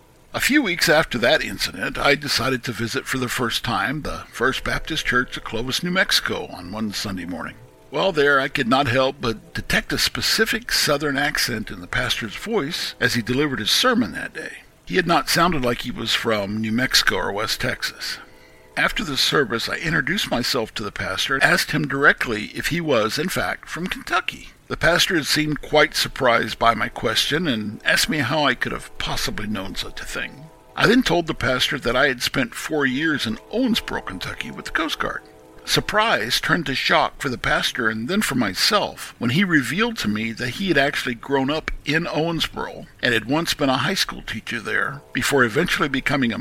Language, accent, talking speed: English, American, 205 wpm